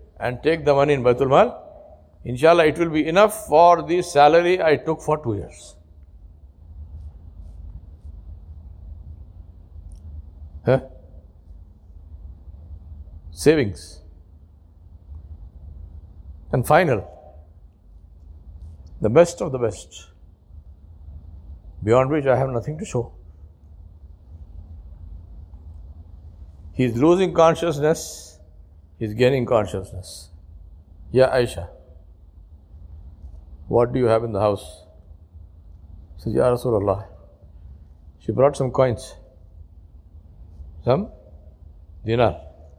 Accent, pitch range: Indian, 80-105 Hz